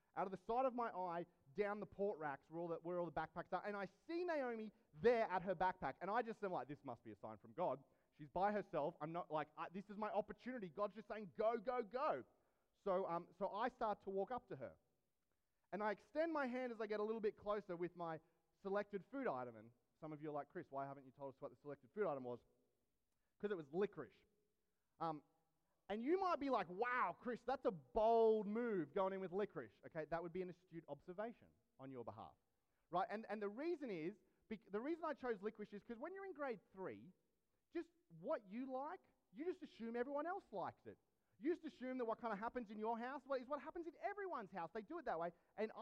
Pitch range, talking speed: 175-250 Hz, 235 wpm